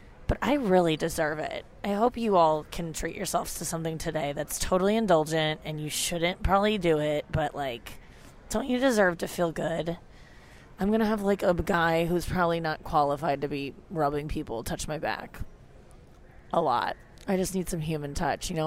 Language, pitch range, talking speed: English, 155-195 Hz, 195 wpm